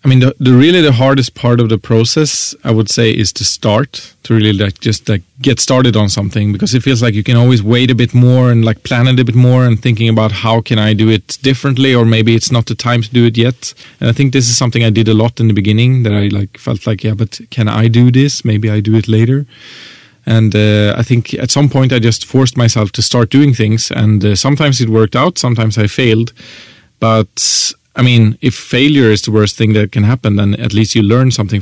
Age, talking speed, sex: 30-49, 255 wpm, male